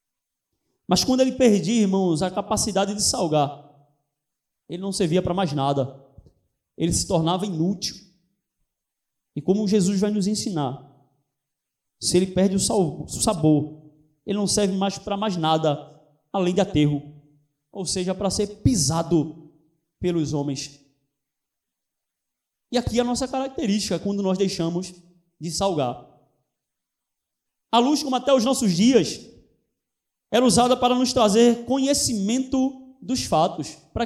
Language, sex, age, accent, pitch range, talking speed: Portuguese, male, 20-39, Brazilian, 165-235 Hz, 130 wpm